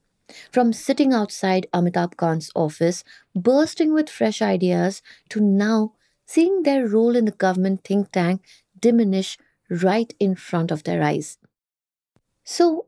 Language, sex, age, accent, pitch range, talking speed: English, female, 20-39, Indian, 200-270 Hz, 130 wpm